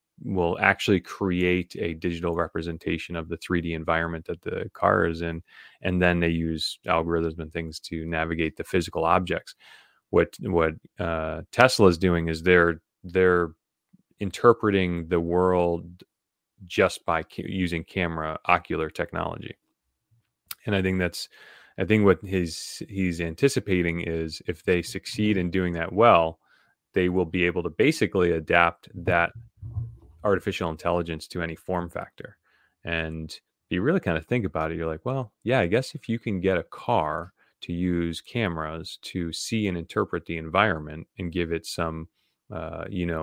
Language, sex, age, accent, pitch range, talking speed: English, male, 30-49, American, 80-95 Hz, 160 wpm